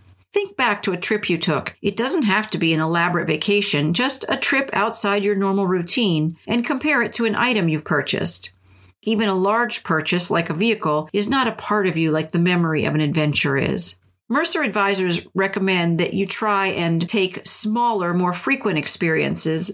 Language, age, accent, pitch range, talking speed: English, 50-69, American, 170-210 Hz, 190 wpm